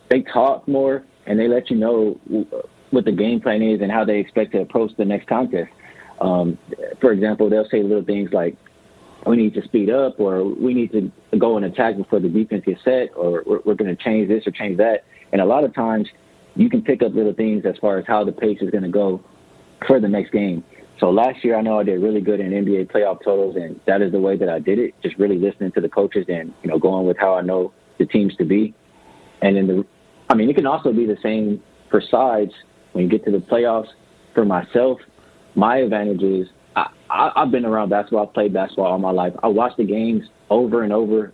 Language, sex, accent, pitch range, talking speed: English, male, American, 95-115 Hz, 235 wpm